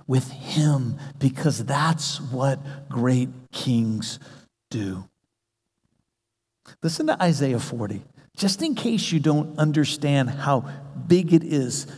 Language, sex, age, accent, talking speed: English, male, 50-69, American, 110 wpm